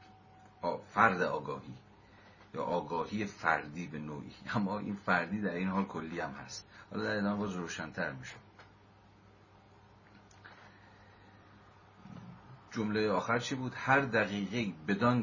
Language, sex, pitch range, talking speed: Persian, male, 90-105 Hz, 100 wpm